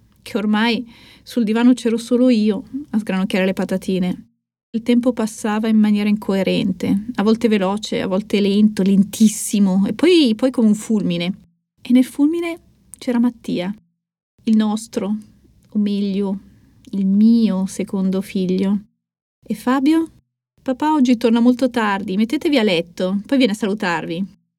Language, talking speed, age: Italian, 140 wpm, 30-49